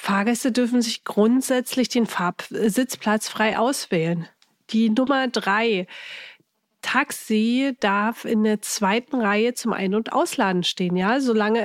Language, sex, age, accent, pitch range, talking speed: German, female, 40-59, German, 200-255 Hz, 130 wpm